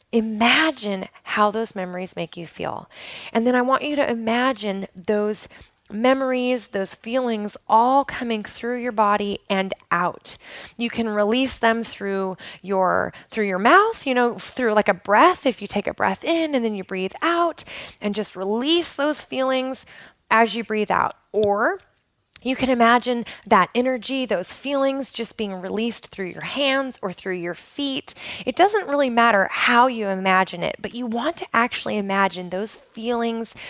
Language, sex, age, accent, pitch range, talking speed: English, female, 20-39, American, 195-255 Hz, 165 wpm